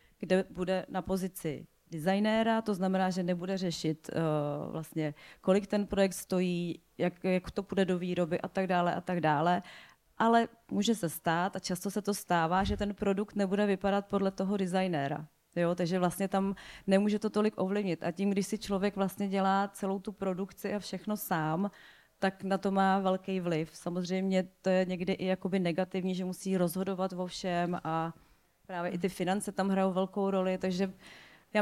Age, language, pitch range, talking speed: 30-49, Czech, 180-200 Hz, 175 wpm